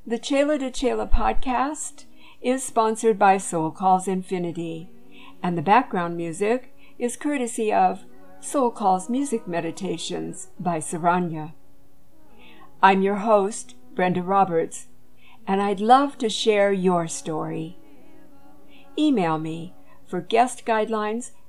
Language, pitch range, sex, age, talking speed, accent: English, 165-225 Hz, female, 60-79, 115 wpm, American